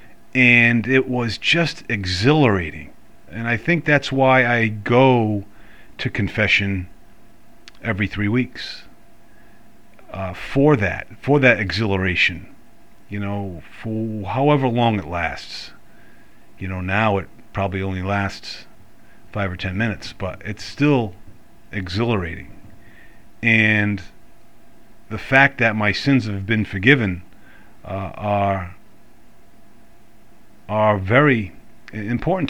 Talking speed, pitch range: 110 wpm, 100-130 Hz